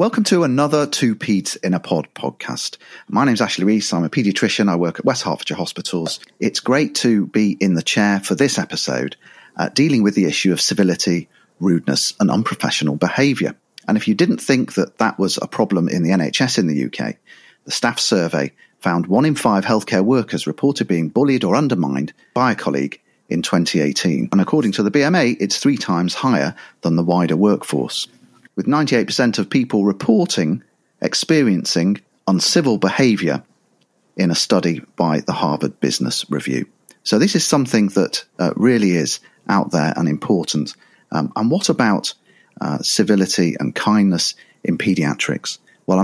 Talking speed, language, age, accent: 175 wpm, English, 40-59, British